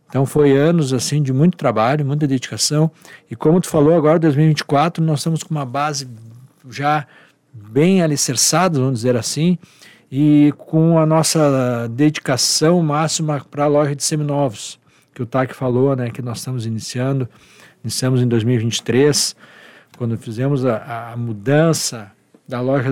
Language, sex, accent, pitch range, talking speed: Portuguese, male, Brazilian, 120-150 Hz, 145 wpm